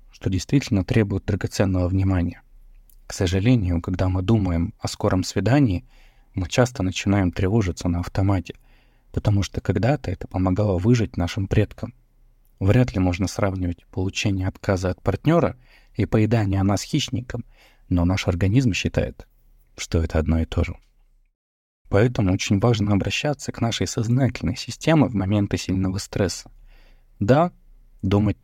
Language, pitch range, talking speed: Russian, 90-120 Hz, 135 wpm